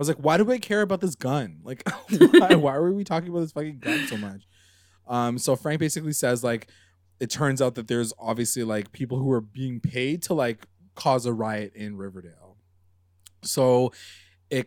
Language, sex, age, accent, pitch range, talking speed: English, male, 20-39, American, 105-145 Hz, 200 wpm